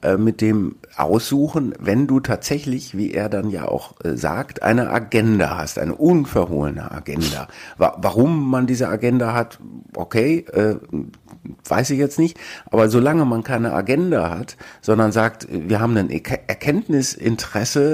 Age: 50-69